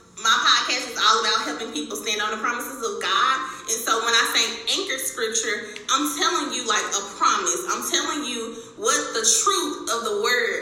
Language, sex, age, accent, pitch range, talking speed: English, female, 20-39, American, 225-375 Hz, 200 wpm